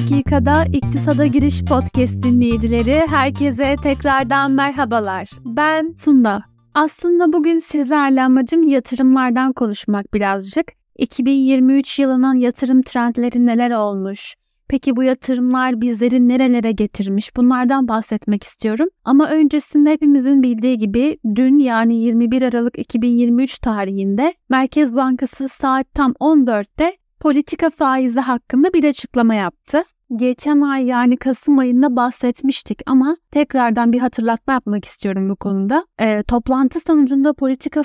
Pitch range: 235-280 Hz